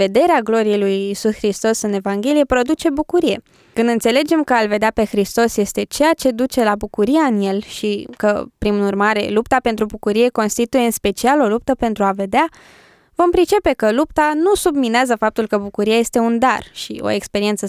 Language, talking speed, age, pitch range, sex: Romanian, 185 wpm, 20-39, 200-265 Hz, female